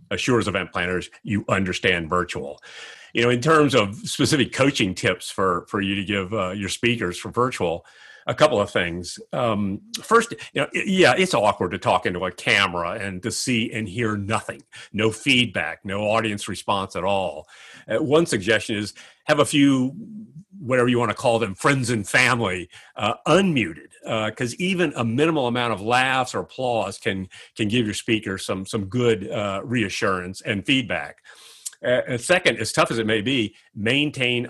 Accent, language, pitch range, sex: American, English, 100-125 Hz, male